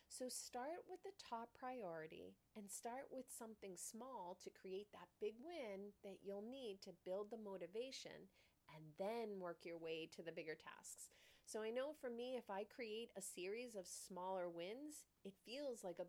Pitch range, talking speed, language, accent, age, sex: 175-230 Hz, 185 wpm, English, American, 30-49, female